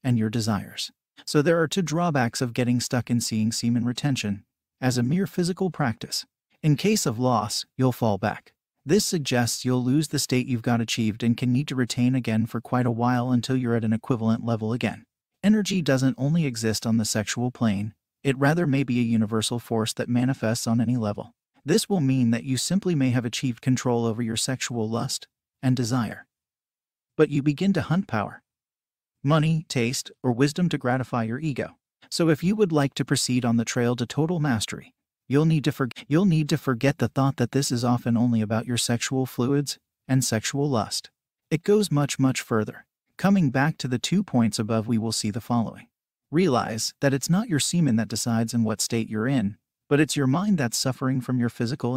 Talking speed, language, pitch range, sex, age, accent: 200 wpm, English, 115-145 Hz, male, 40-59, American